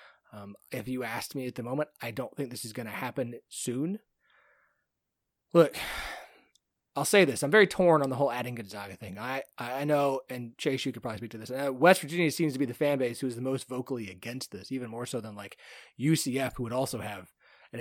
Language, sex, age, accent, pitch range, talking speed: English, male, 30-49, American, 120-155 Hz, 225 wpm